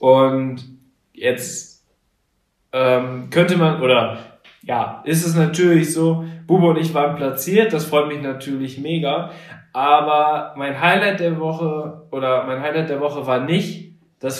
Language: German